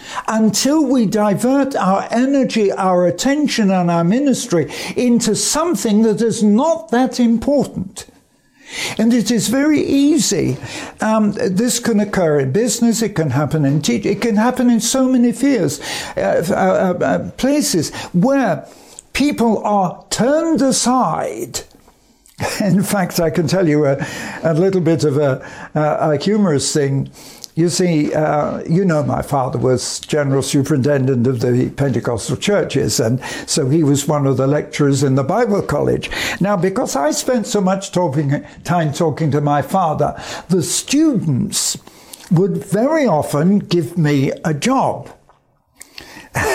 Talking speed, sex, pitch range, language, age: 145 wpm, male, 155-240 Hz, English, 60-79